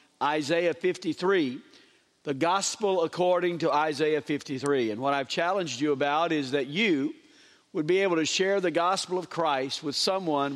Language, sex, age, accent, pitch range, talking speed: English, male, 50-69, American, 150-185 Hz, 160 wpm